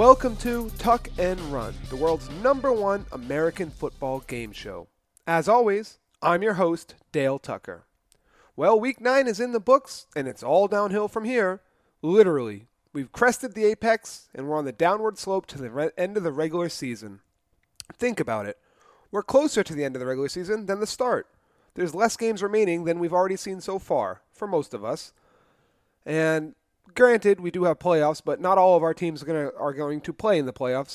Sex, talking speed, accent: male, 195 wpm, American